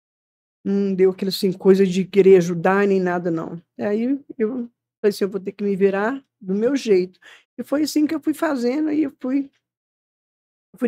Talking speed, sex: 190 wpm, female